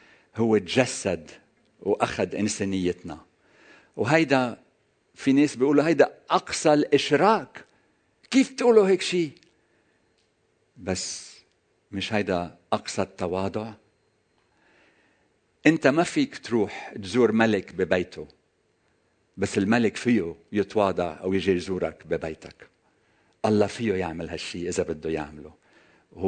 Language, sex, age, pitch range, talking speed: Arabic, male, 60-79, 90-130 Hz, 95 wpm